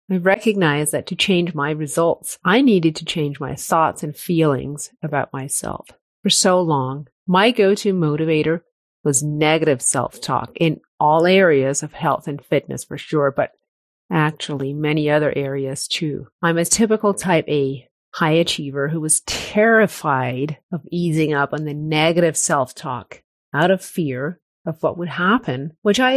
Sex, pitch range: female, 150-190 Hz